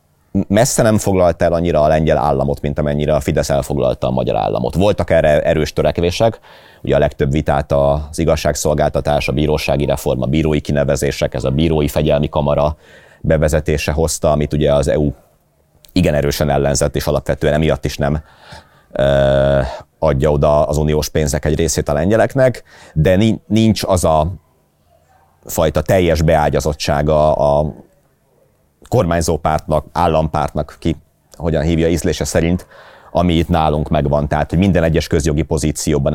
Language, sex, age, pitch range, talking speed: Hungarian, male, 30-49, 75-85 Hz, 145 wpm